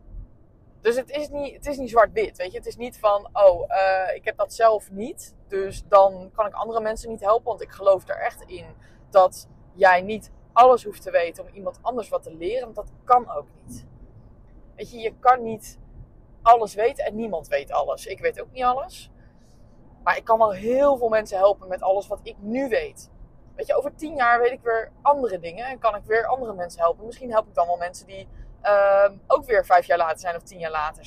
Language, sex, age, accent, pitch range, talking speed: Dutch, female, 20-39, Dutch, 185-245 Hz, 230 wpm